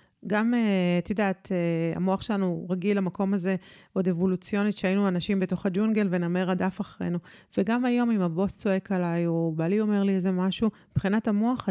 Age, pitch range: 30-49, 180-215 Hz